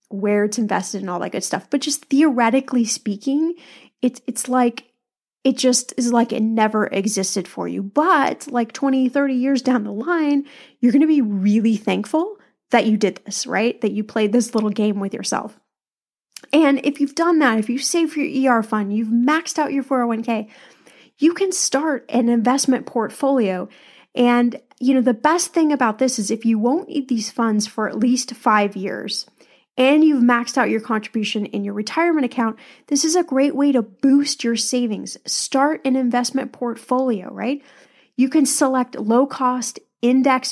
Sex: female